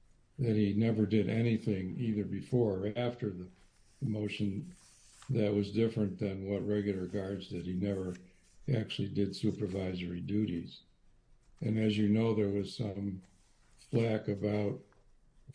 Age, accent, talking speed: 60-79, American, 135 wpm